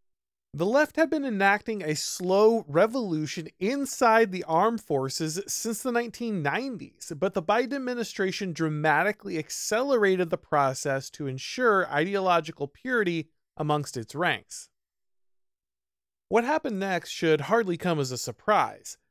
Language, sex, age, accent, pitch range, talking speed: English, male, 30-49, American, 160-230 Hz, 120 wpm